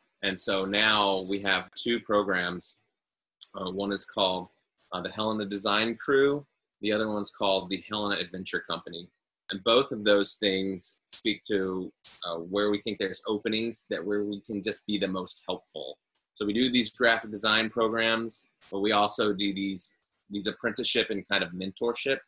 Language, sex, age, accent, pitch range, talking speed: English, male, 30-49, American, 95-110 Hz, 170 wpm